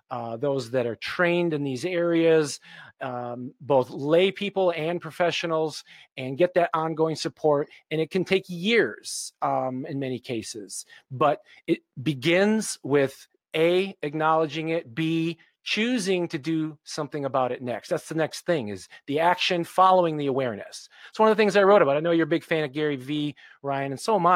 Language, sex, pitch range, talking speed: English, male, 140-200 Hz, 180 wpm